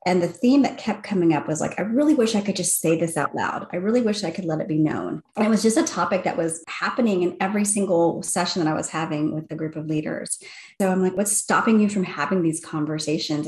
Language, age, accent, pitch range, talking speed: English, 30-49, American, 160-200 Hz, 265 wpm